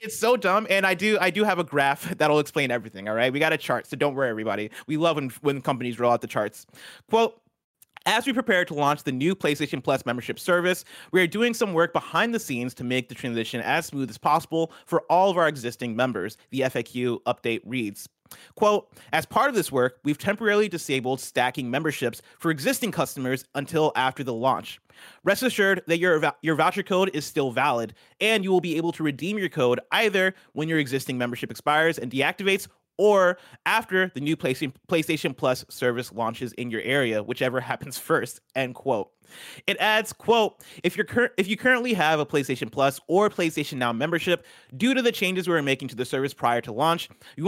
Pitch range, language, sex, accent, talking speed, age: 130-185 Hz, English, male, American, 205 wpm, 30-49